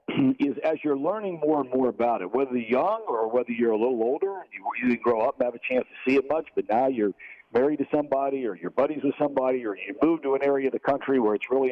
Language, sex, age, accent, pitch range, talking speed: English, male, 50-69, American, 125-165 Hz, 275 wpm